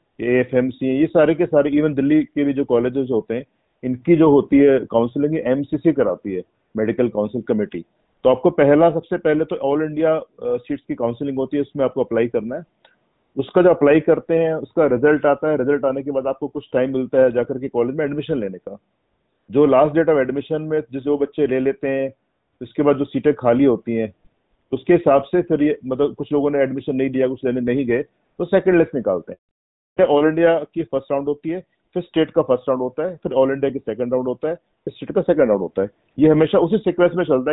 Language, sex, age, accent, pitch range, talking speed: Hindi, male, 50-69, native, 130-155 Hz, 225 wpm